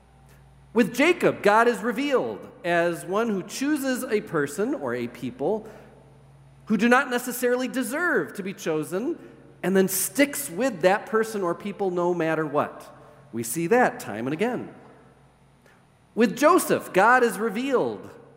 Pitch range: 150-225 Hz